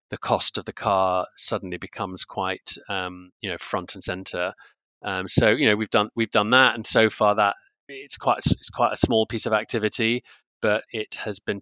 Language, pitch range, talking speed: English, 100-110 Hz, 205 wpm